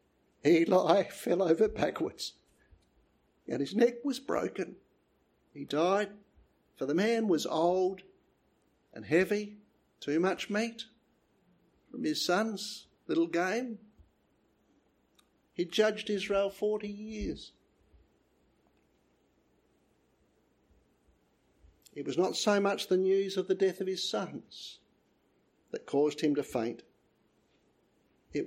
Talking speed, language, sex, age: 105 wpm, English, male, 60-79